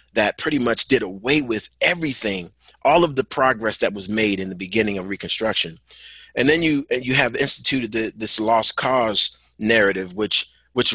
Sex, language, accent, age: male, English, American, 30-49